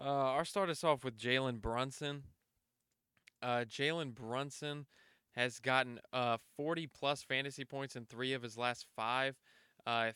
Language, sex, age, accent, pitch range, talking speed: English, male, 20-39, American, 120-140 Hz, 140 wpm